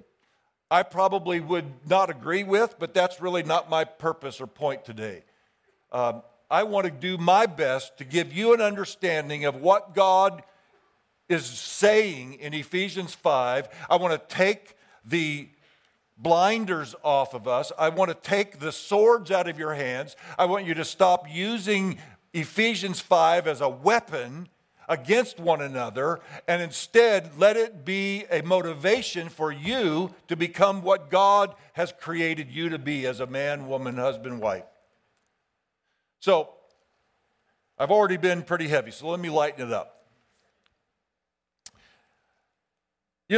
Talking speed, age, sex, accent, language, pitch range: 145 wpm, 50-69, male, American, English, 150-195 Hz